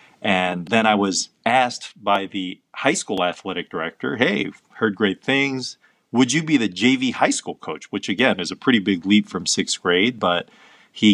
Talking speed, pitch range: 190 wpm, 100-125 Hz